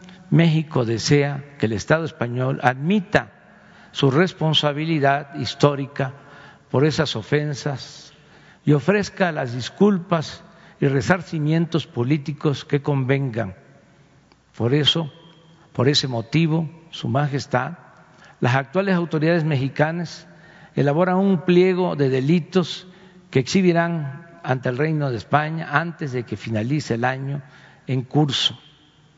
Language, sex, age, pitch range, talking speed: Spanish, male, 60-79, 135-165 Hz, 110 wpm